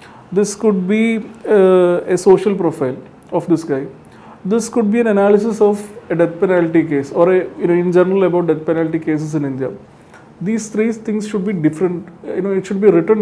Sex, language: male, Malayalam